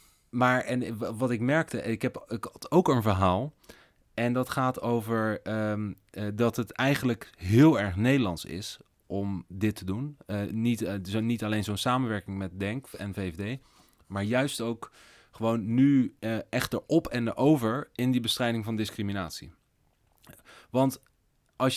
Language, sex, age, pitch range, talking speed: Dutch, male, 30-49, 100-125 Hz, 155 wpm